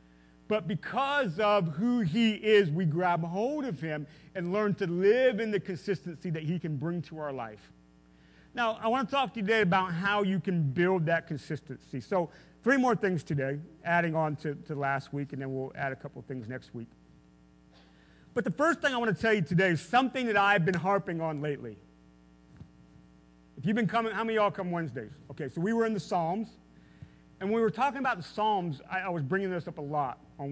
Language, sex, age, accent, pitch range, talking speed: English, male, 40-59, American, 140-205 Hz, 220 wpm